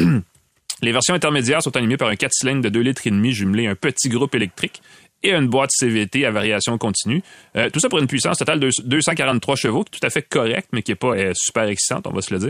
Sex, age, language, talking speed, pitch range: male, 30-49, French, 245 wpm, 110-140 Hz